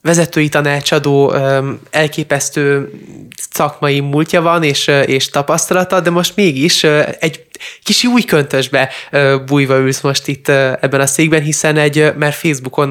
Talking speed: 125 wpm